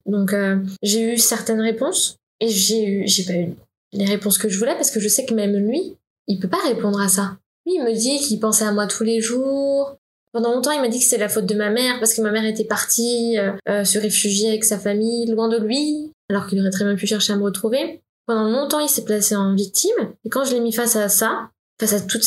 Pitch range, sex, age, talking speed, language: 200-235 Hz, female, 10-29, 260 wpm, French